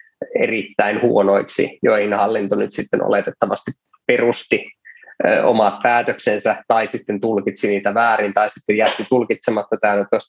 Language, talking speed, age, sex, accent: Finnish, 120 wpm, 20-39, male, native